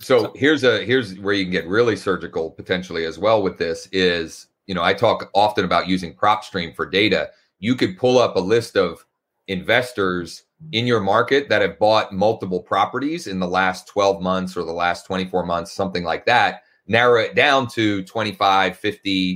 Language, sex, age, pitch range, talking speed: English, male, 30-49, 90-110 Hz, 190 wpm